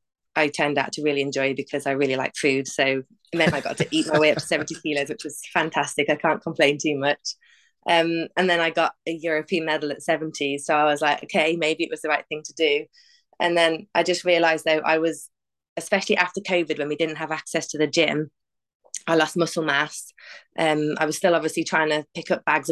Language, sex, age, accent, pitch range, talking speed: English, female, 20-39, British, 145-165 Hz, 230 wpm